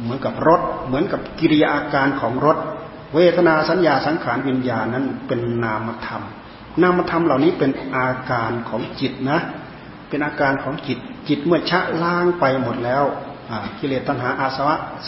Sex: male